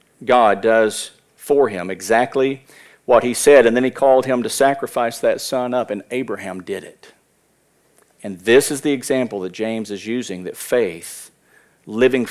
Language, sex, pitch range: English, male, 115-185 Hz